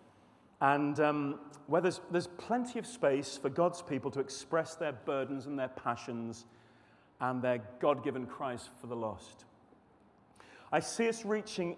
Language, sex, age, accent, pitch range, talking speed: English, male, 30-49, British, 140-190 Hz, 150 wpm